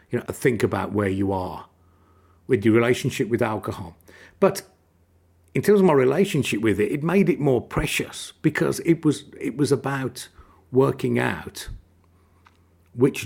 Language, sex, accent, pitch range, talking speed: English, male, British, 90-130 Hz, 150 wpm